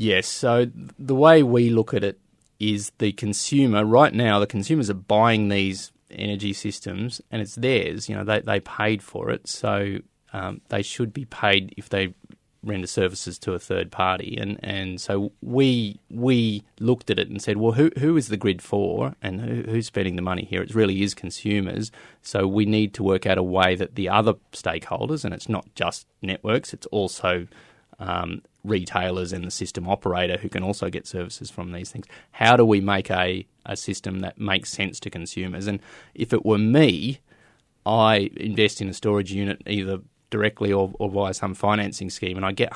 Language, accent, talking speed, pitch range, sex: English, Australian, 195 wpm, 95-110 Hz, male